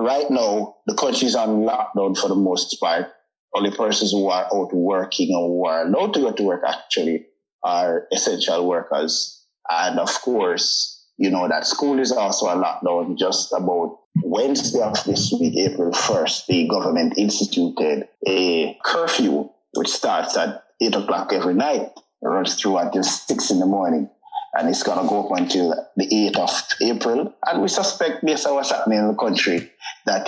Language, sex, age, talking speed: English, male, 30-49, 175 wpm